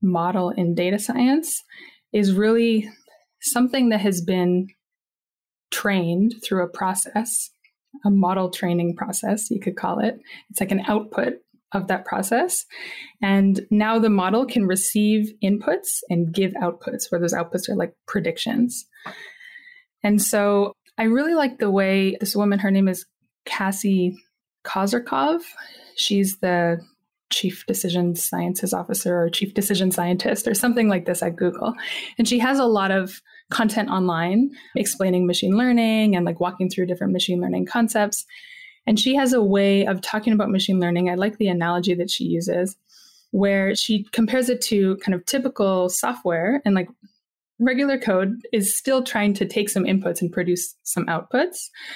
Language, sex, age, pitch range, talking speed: English, female, 20-39, 185-235 Hz, 155 wpm